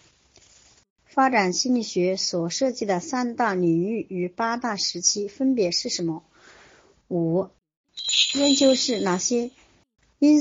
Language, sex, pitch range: Chinese, male, 180-255 Hz